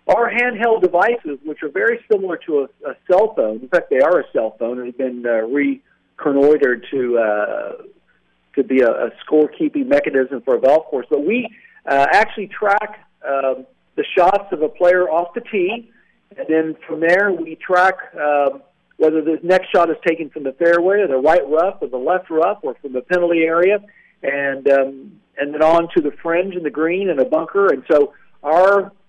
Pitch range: 140-190 Hz